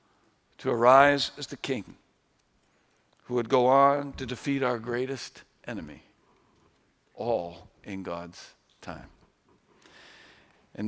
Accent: American